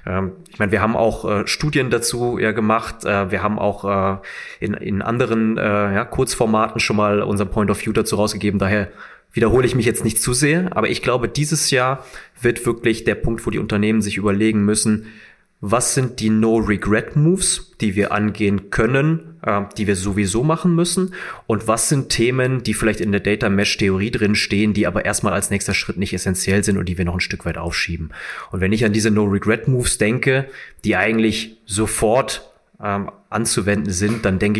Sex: male